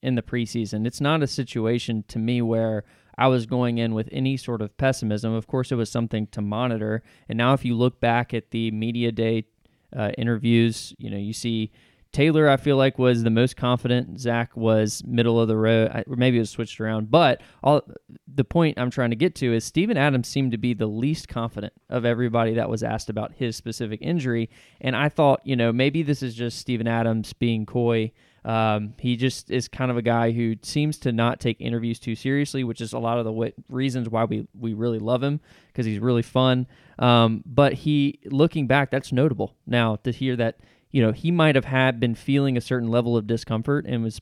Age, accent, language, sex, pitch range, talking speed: 20-39, American, English, male, 115-130 Hz, 215 wpm